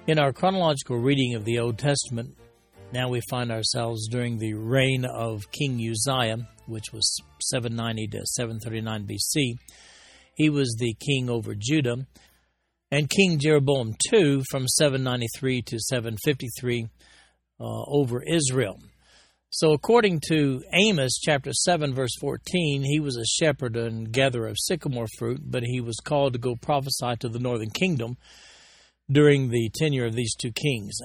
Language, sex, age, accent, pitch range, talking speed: English, male, 60-79, American, 115-140 Hz, 145 wpm